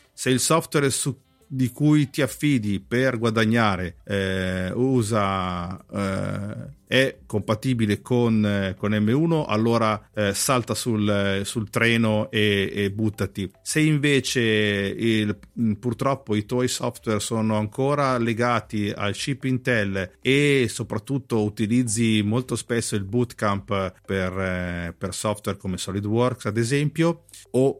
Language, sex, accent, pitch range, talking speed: Italian, male, native, 100-120 Hz, 120 wpm